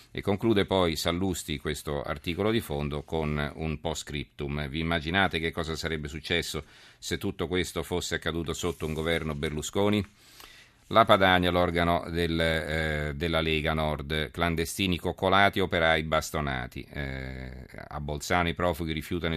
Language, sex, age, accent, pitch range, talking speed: Italian, male, 40-59, native, 75-90 Hz, 135 wpm